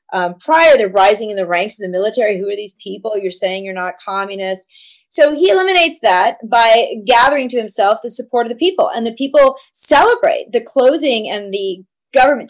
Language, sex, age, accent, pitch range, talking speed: English, female, 30-49, American, 200-270 Hz, 195 wpm